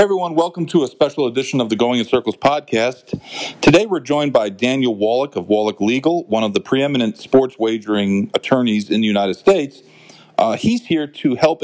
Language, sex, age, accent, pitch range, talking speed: English, male, 40-59, American, 105-135 Hz, 190 wpm